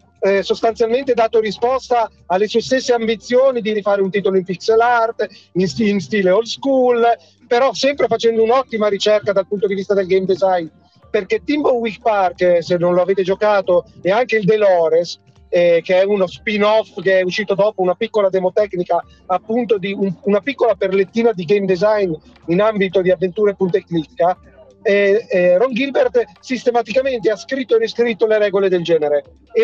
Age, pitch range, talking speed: 40-59, 190-240 Hz, 185 wpm